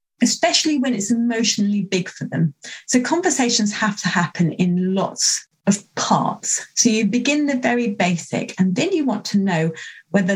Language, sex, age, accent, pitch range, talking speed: English, female, 30-49, British, 170-215 Hz, 170 wpm